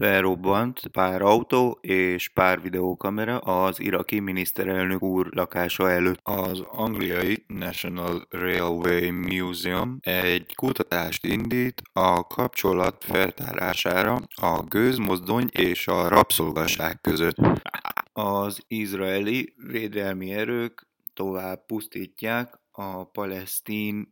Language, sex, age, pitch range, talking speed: English, male, 20-39, 90-105 Hz, 90 wpm